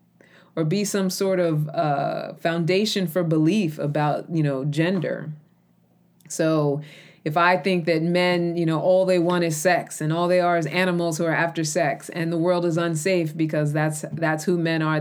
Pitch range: 155-180 Hz